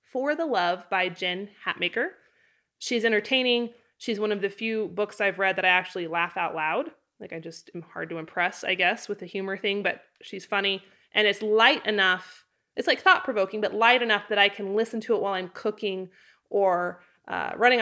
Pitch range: 185-235 Hz